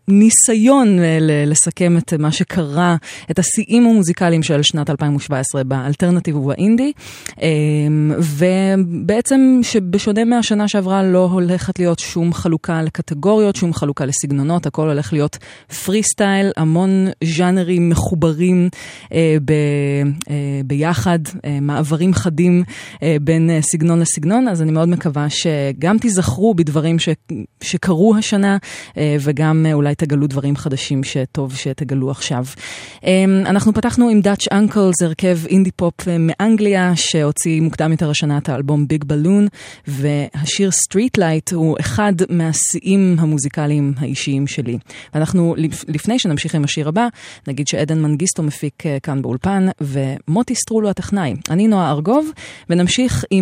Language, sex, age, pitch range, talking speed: Hebrew, female, 20-39, 150-190 Hz, 115 wpm